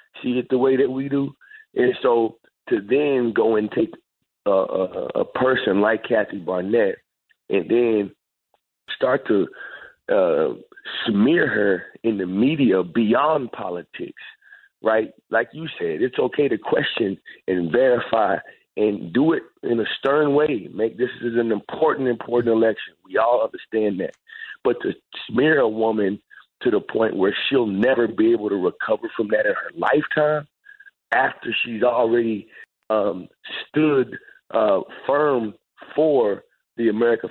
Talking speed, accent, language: 145 wpm, American, English